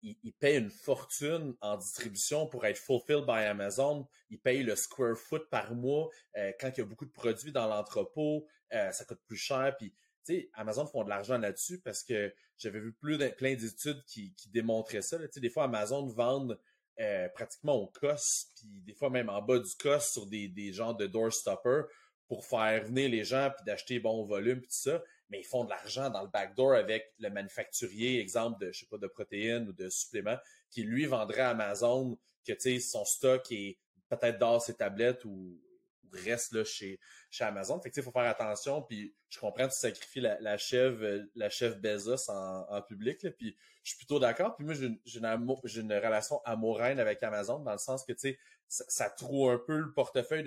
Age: 30-49